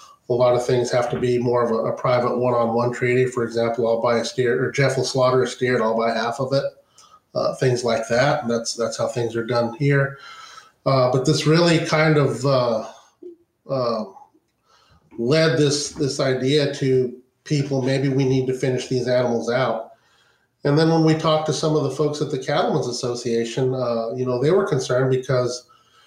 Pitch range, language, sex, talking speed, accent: 125-140 Hz, English, male, 200 wpm, American